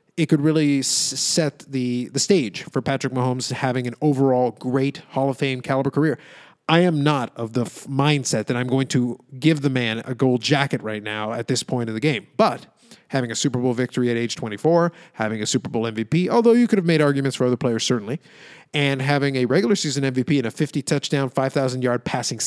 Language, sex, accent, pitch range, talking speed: English, male, American, 125-160 Hz, 210 wpm